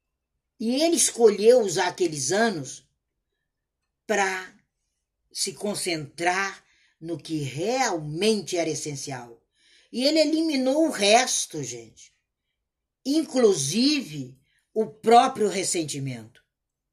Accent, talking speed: Brazilian, 85 wpm